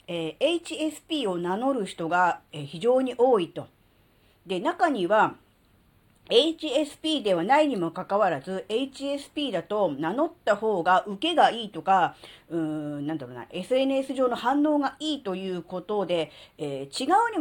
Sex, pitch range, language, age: female, 180-275 Hz, Japanese, 40-59